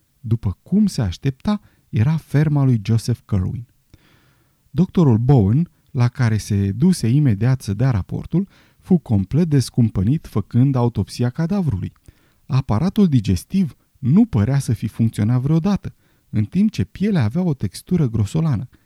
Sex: male